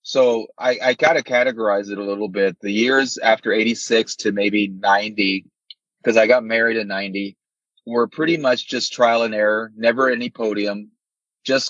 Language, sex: English, male